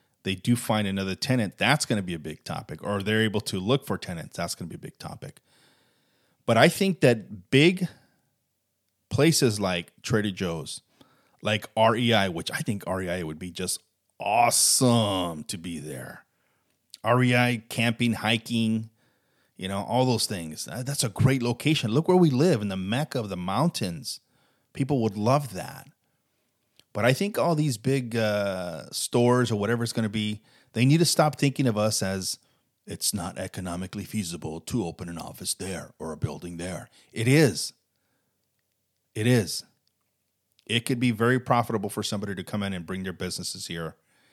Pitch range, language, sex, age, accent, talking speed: 95-130 Hz, English, male, 30-49, American, 175 wpm